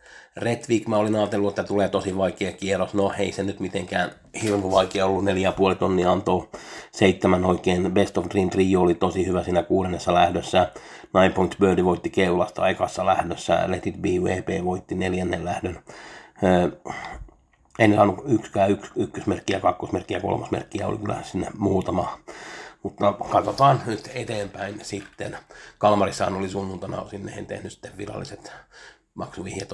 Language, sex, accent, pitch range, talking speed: Finnish, male, native, 95-110 Hz, 135 wpm